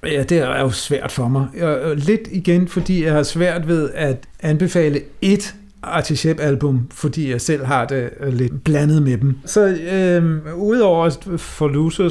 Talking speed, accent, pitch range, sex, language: 165 wpm, native, 135-170 Hz, male, Danish